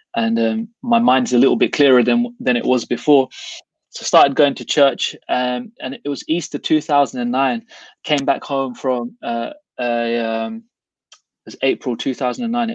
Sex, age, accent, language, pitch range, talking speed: male, 20-39, British, English, 120-145 Hz, 170 wpm